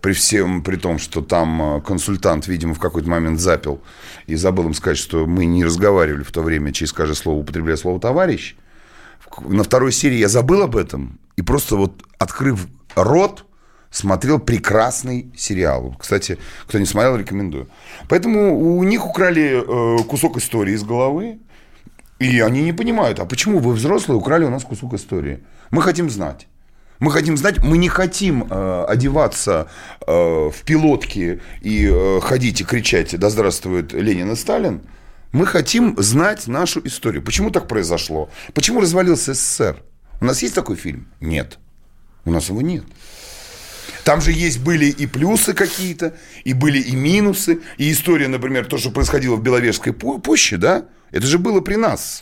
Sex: male